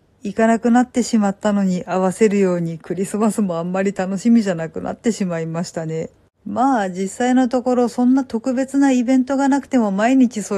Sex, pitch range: female, 190-235 Hz